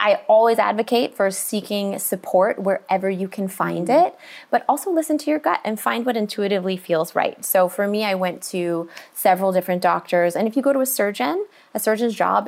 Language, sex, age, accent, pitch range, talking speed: English, female, 20-39, American, 170-220 Hz, 200 wpm